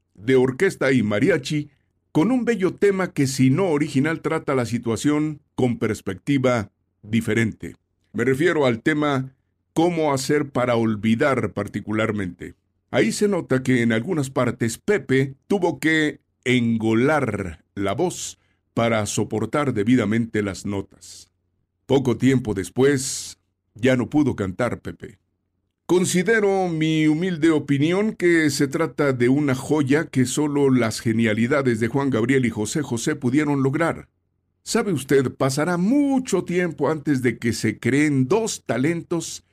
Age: 50-69